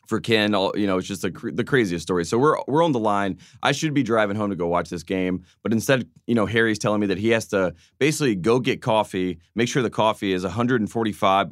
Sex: male